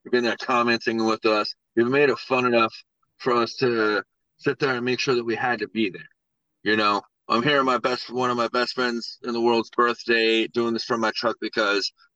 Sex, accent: male, American